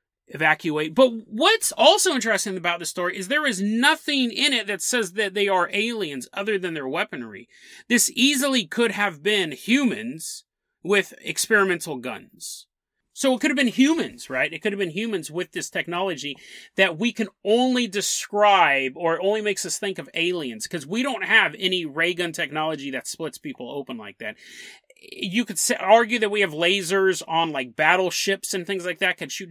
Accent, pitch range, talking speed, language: American, 160-225 Hz, 185 wpm, English